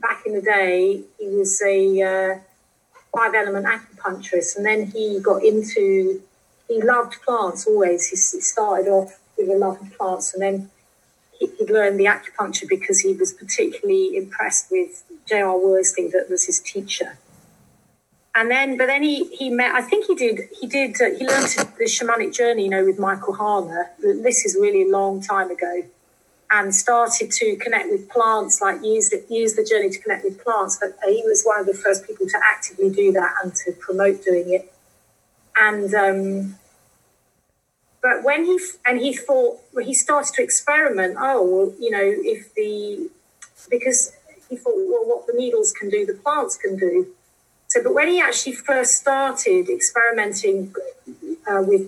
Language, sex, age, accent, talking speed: English, female, 40-59, British, 170 wpm